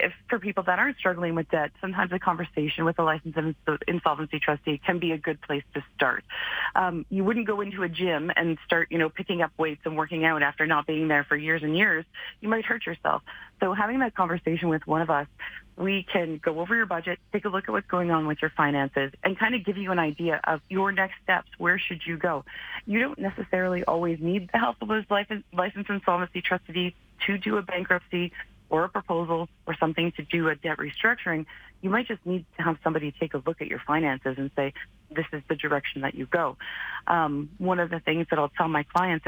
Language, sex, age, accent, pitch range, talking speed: English, female, 30-49, American, 155-185 Hz, 225 wpm